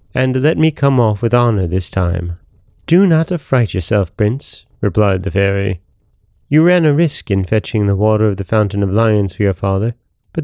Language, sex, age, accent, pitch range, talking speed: English, male, 30-49, American, 100-135 Hz, 195 wpm